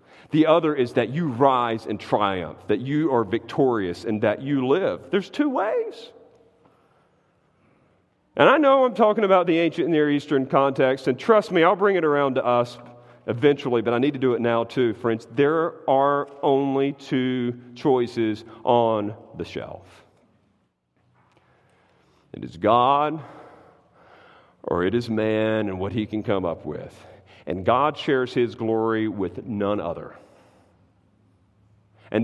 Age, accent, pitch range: 40-59, American, 110-170 Hz